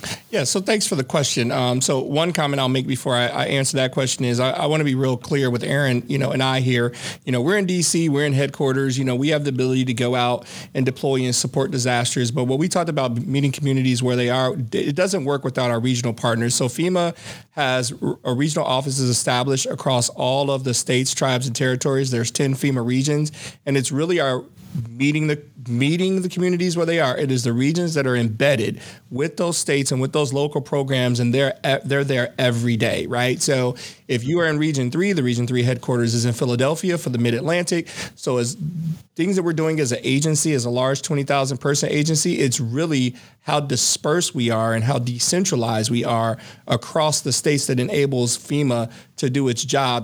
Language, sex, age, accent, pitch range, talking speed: English, male, 30-49, American, 125-150 Hz, 215 wpm